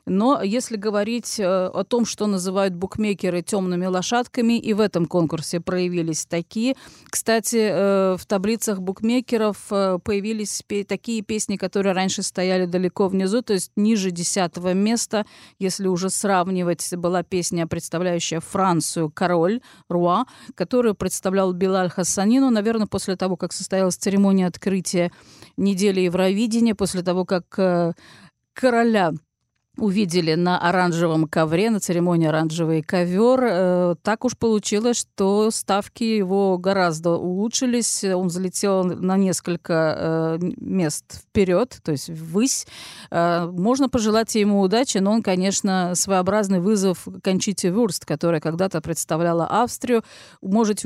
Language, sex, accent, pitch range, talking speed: Russian, female, native, 180-215 Hz, 120 wpm